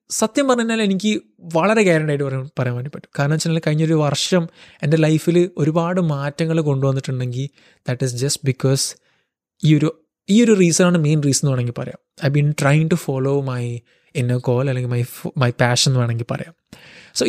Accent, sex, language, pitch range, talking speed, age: native, male, Malayalam, 140-180 Hz, 170 wpm, 20-39